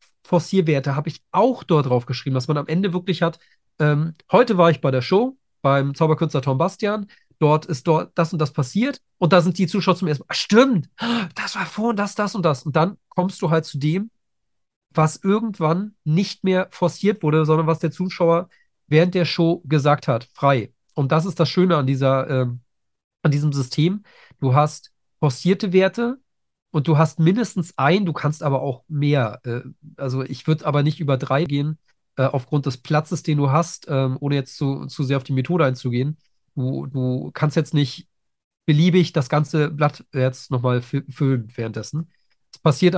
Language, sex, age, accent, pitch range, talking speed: German, male, 40-59, German, 135-175 Hz, 190 wpm